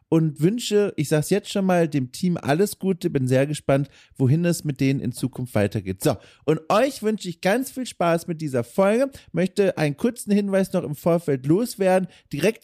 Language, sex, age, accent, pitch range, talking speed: German, male, 30-49, German, 140-185 Hz, 195 wpm